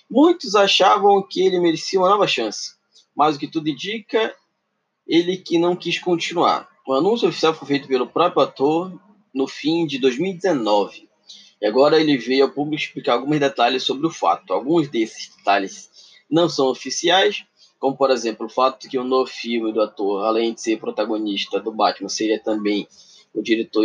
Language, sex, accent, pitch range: Portuguese, male, Brazilian, 130-195 Hz